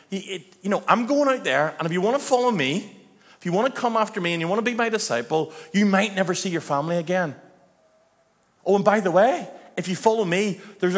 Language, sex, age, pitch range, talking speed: English, male, 40-59, 170-225 Hz, 240 wpm